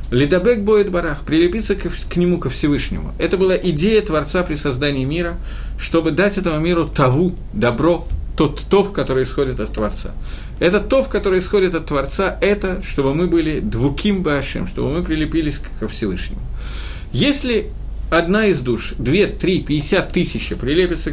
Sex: male